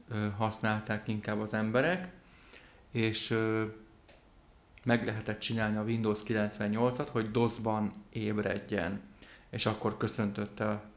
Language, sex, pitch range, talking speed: Hungarian, male, 105-115 Hz, 95 wpm